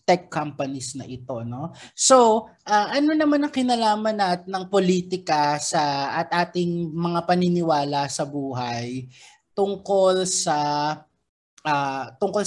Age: 20-39